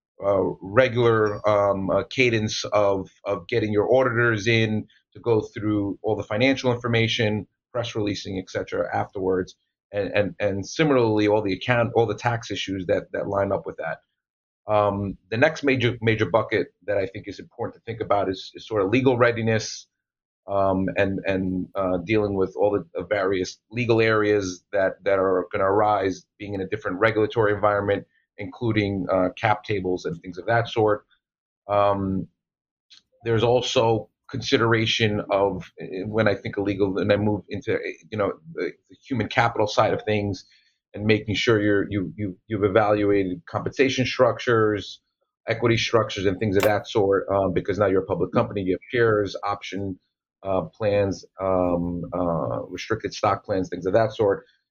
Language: English